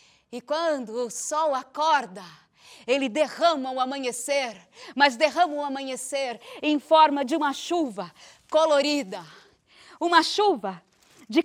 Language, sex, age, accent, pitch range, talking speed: Portuguese, female, 20-39, Brazilian, 245-340 Hz, 115 wpm